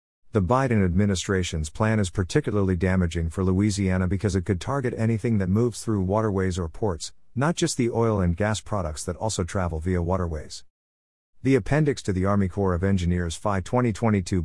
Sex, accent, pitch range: male, American, 90-110 Hz